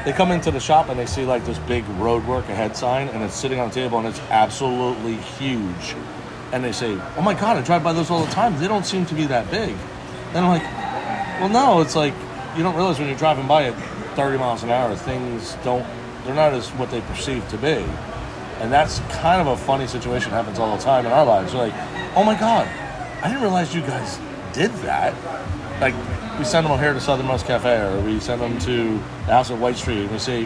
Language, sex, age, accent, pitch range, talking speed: English, male, 30-49, American, 115-160 Hz, 240 wpm